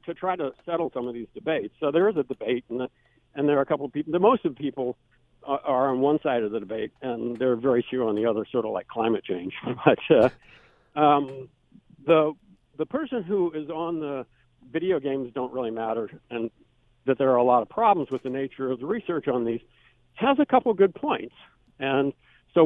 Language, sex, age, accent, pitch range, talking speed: English, male, 60-79, American, 125-155 Hz, 235 wpm